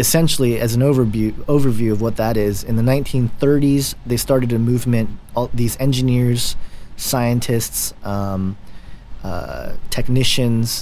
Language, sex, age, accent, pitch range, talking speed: English, male, 30-49, American, 105-130 Hz, 130 wpm